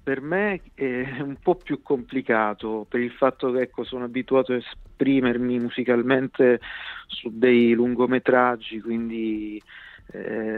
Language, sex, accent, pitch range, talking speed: Italian, male, native, 115-130 Hz, 120 wpm